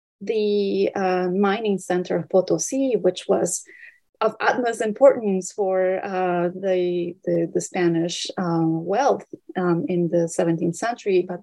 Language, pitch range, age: English, 185-250 Hz, 30-49